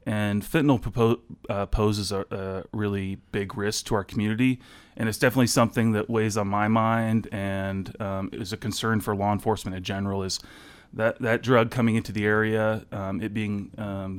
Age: 30-49